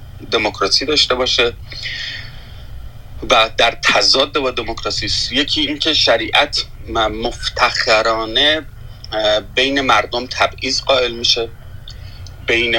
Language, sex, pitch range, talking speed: Persian, male, 105-125 Hz, 95 wpm